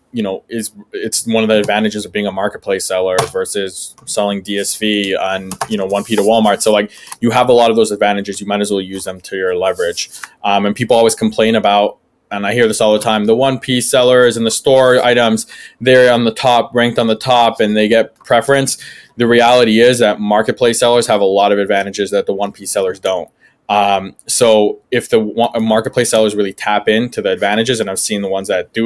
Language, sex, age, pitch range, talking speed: English, male, 20-39, 105-120 Hz, 225 wpm